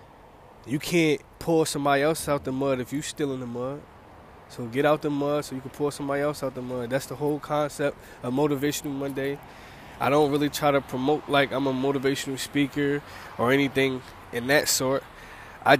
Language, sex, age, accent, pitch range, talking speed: English, male, 20-39, American, 120-145 Hz, 200 wpm